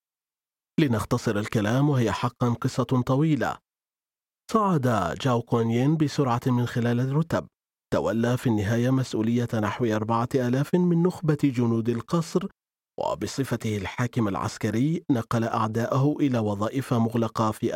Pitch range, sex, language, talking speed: 115-145 Hz, male, Arabic, 110 wpm